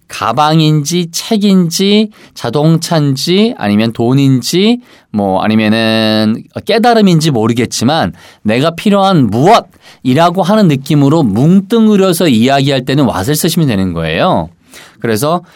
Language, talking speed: English, 85 wpm